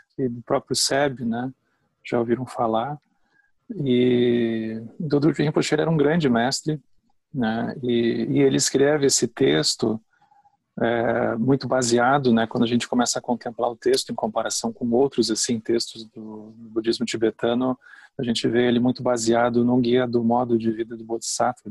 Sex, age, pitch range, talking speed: male, 40-59, 115-140 Hz, 160 wpm